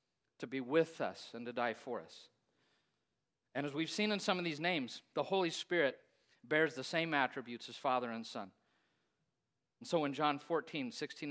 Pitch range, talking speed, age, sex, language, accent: 130-190 Hz, 185 wpm, 50-69, male, English, American